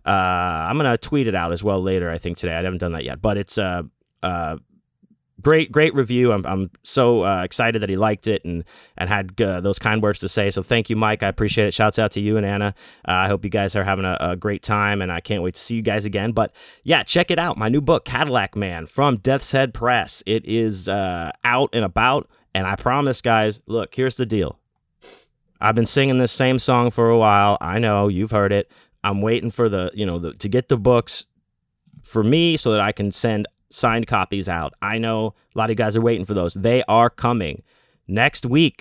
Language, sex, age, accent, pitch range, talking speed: English, male, 30-49, American, 100-120 Hz, 240 wpm